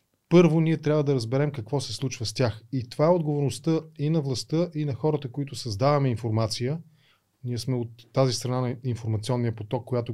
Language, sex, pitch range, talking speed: Bulgarian, male, 115-145 Hz, 190 wpm